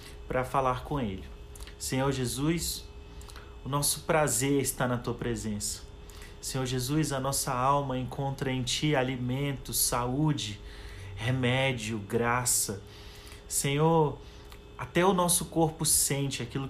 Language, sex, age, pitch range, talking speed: Portuguese, male, 30-49, 115-150 Hz, 115 wpm